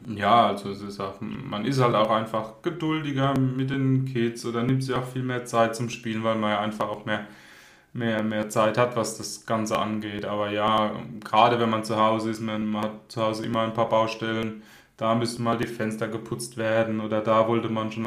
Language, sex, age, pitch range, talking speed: German, male, 20-39, 105-115 Hz, 215 wpm